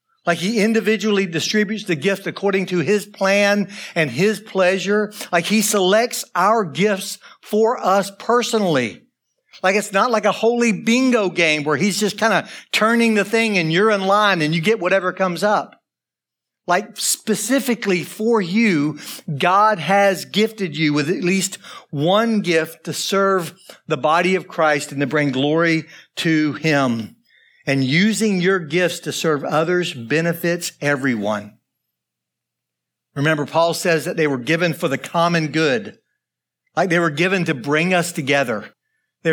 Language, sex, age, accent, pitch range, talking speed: English, male, 60-79, American, 160-205 Hz, 155 wpm